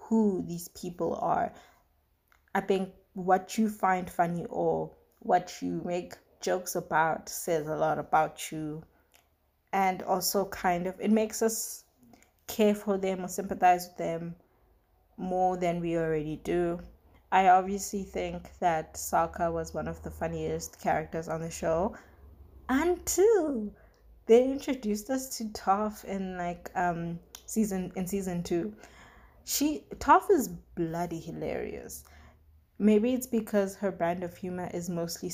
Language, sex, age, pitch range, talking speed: English, female, 20-39, 165-210 Hz, 140 wpm